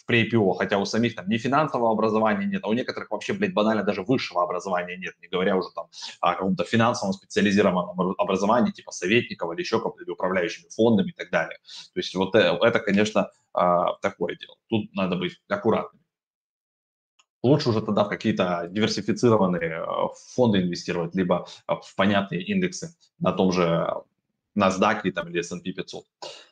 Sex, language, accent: male, Russian, native